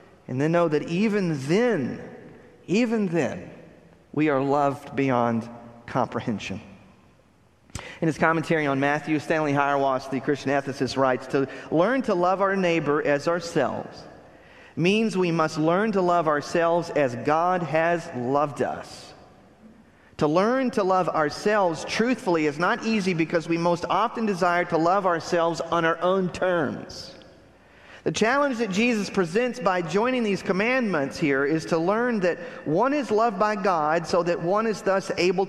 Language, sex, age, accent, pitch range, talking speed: English, male, 40-59, American, 145-195 Hz, 150 wpm